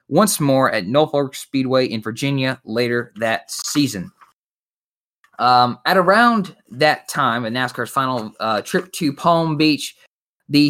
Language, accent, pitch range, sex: English, American, 115-150 Hz, male